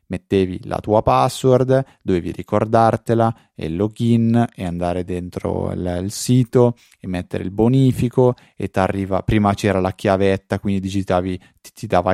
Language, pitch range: Italian, 95-115 Hz